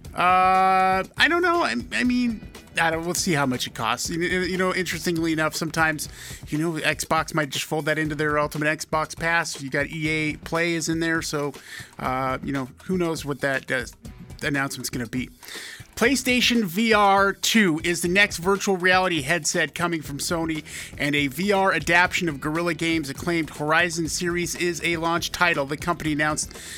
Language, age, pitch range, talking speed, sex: English, 30-49, 155-185 Hz, 185 wpm, male